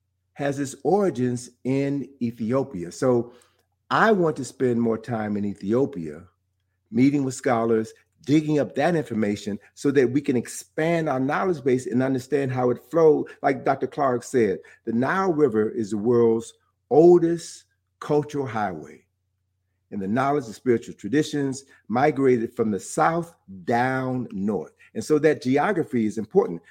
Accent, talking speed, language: American, 145 wpm, English